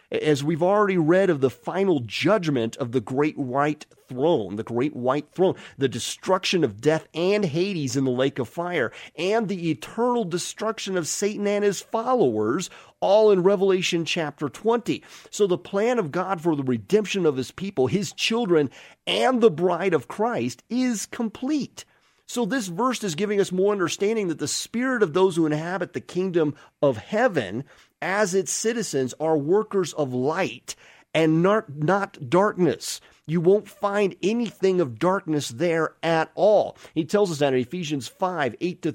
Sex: male